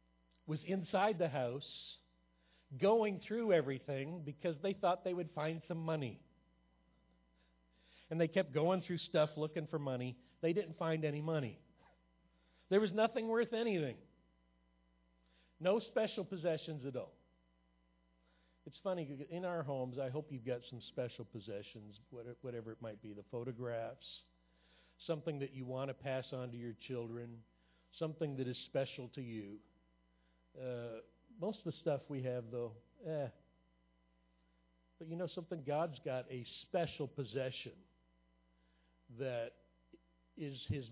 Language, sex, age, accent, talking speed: English, male, 50-69, American, 135 wpm